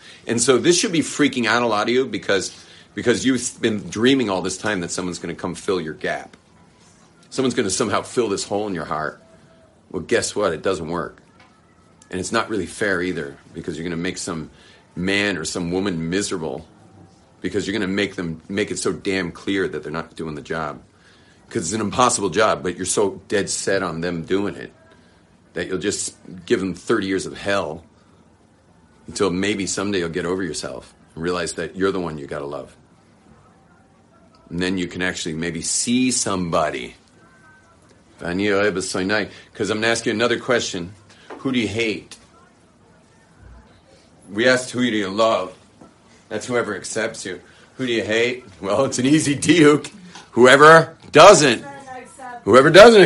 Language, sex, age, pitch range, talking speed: English, male, 40-59, 90-120 Hz, 180 wpm